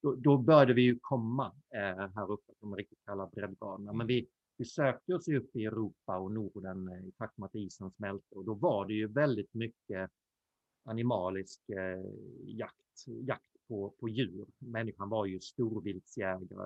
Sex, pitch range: male, 105-125 Hz